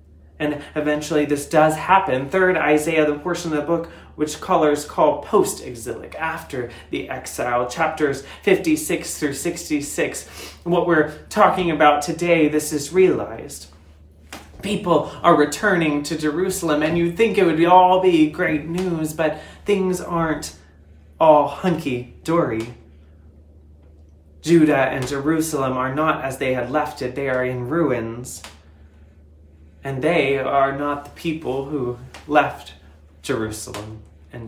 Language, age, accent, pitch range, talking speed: English, 30-49, American, 120-170 Hz, 130 wpm